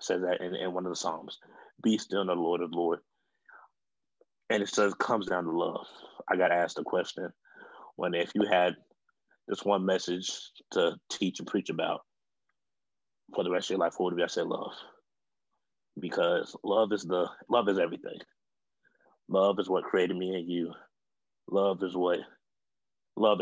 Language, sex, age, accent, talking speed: English, male, 20-39, American, 185 wpm